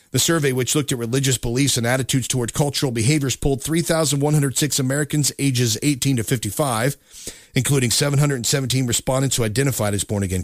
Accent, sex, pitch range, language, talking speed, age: American, male, 115-145 Hz, English, 150 wpm, 40-59